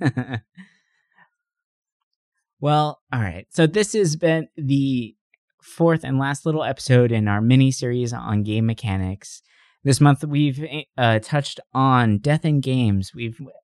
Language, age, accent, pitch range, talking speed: English, 20-39, American, 110-145 Hz, 130 wpm